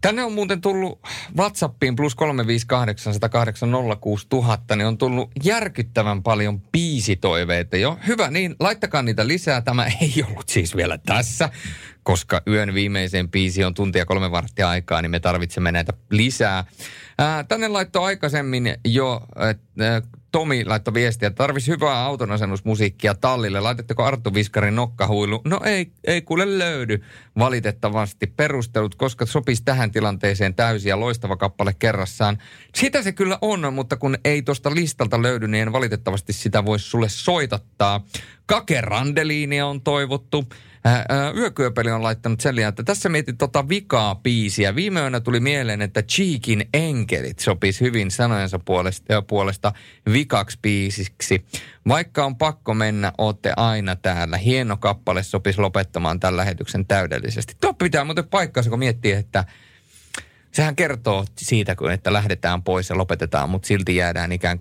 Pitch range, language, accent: 100-140 Hz, Finnish, native